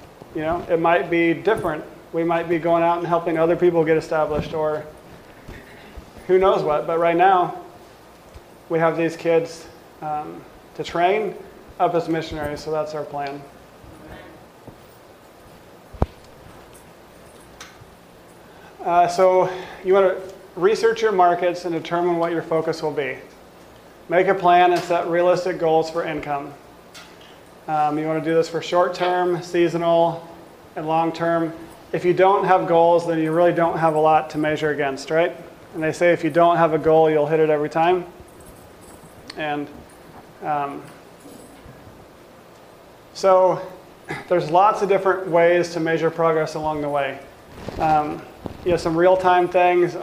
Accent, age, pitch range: American, 30-49, 160-180 Hz